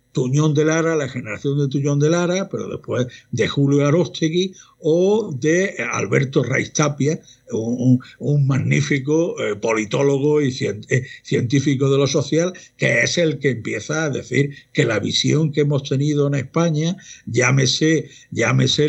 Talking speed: 145 wpm